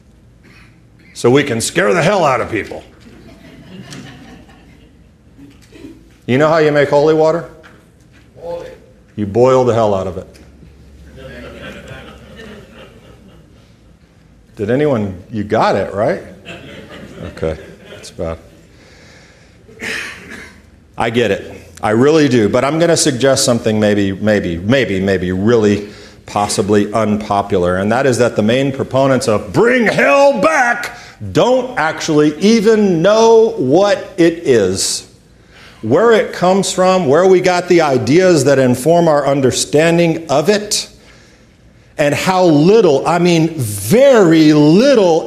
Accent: American